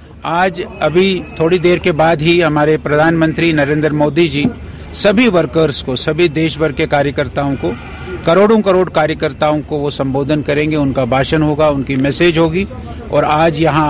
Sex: male